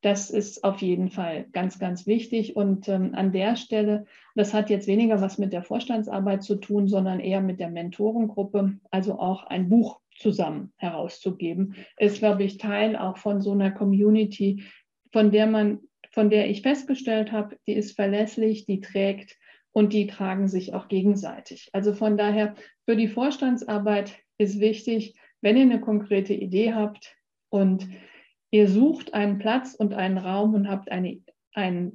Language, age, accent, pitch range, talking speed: German, 50-69, German, 195-215 Hz, 165 wpm